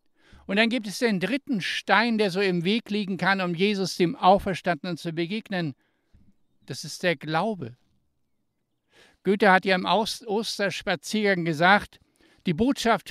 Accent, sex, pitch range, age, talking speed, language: German, male, 175-215 Hz, 60-79, 140 wpm, German